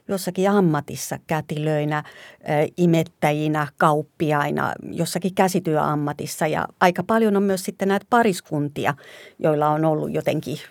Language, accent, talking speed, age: Finnish, native, 105 wpm, 50-69